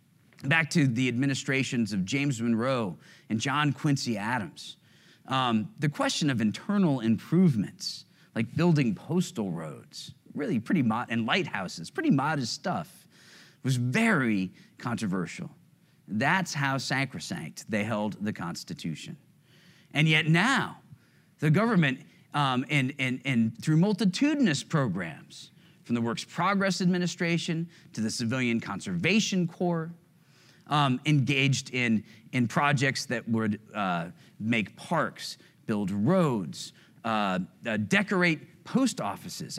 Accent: American